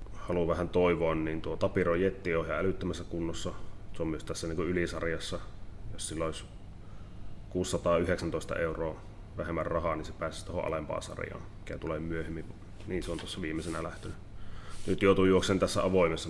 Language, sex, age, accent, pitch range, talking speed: Finnish, male, 30-49, native, 85-100 Hz, 160 wpm